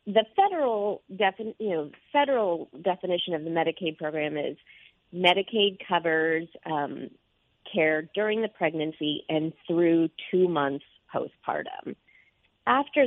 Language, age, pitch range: English, 40-59, 160-200 Hz